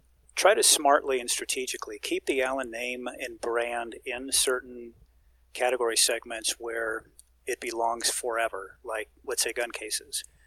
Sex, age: male, 40-59